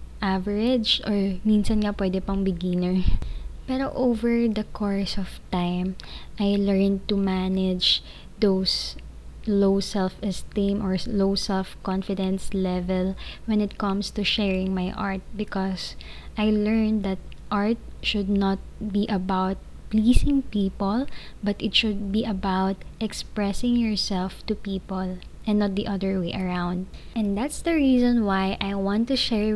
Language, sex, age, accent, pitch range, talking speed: Filipino, female, 20-39, native, 190-220 Hz, 135 wpm